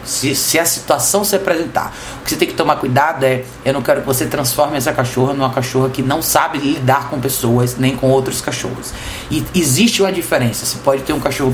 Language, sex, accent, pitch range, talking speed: Portuguese, male, Brazilian, 120-150 Hz, 225 wpm